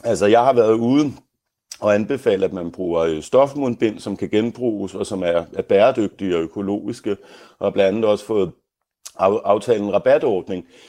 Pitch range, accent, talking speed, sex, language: 95-115 Hz, native, 155 wpm, male, Danish